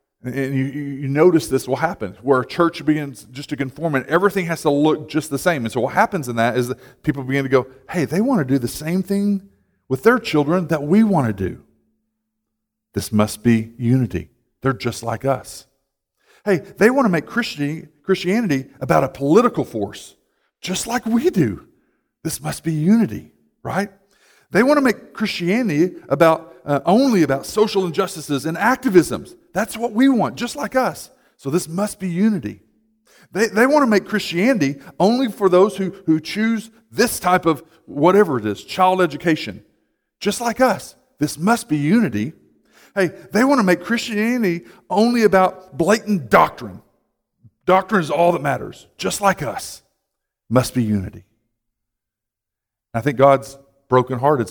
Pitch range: 130-205 Hz